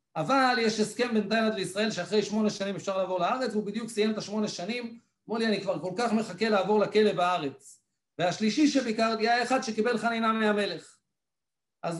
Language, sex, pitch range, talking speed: English, male, 195-240 Hz, 165 wpm